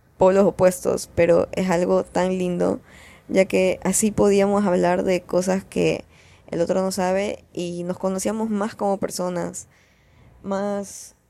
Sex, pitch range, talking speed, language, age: female, 165-195 Hz, 140 wpm, Spanish, 10-29